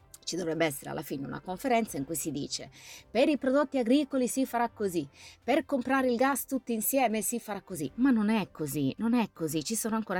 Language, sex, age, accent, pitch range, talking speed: Italian, female, 20-39, native, 155-205 Hz, 220 wpm